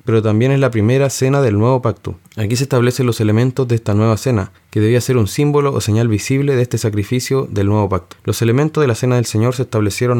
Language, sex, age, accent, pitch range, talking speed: Spanish, male, 20-39, Argentinian, 105-125 Hz, 240 wpm